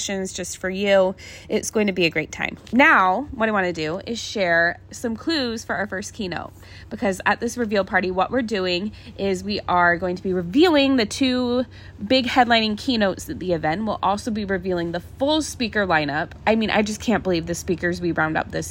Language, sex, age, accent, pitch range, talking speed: English, female, 20-39, American, 185-235 Hz, 220 wpm